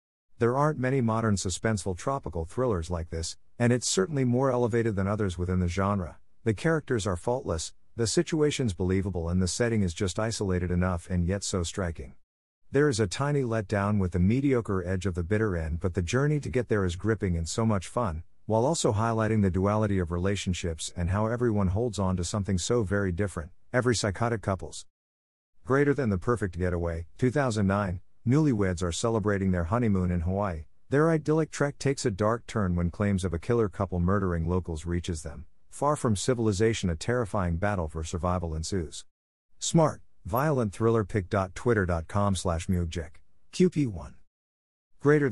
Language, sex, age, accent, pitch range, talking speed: English, male, 50-69, American, 90-120 Hz, 170 wpm